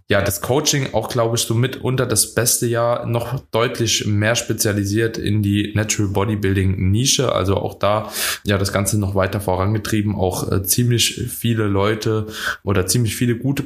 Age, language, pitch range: 20-39, German, 105-120 Hz